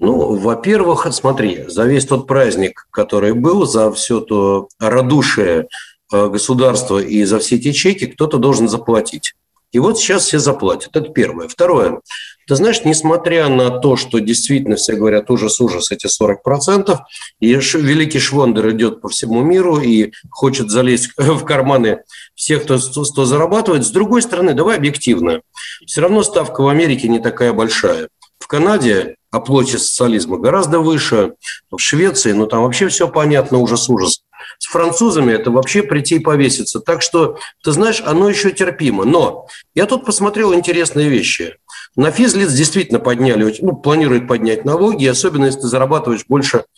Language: Russian